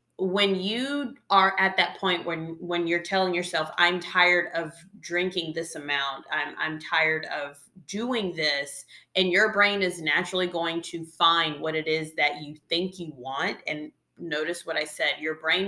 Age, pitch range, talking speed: 30-49, 155-185 Hz, 175 wpm